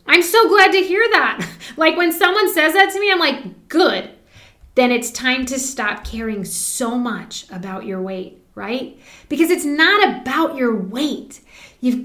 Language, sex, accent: English, female, American